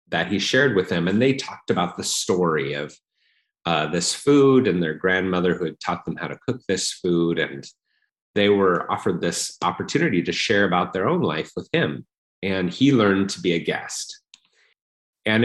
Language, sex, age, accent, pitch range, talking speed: English, male, 30-49, American, 85-100 Hz, 190 wpm